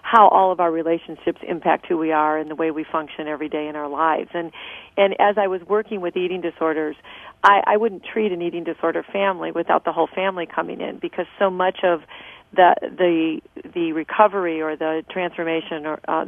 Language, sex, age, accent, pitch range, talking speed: English, female, 40-59, American, 165-195 Hz, 205 wpm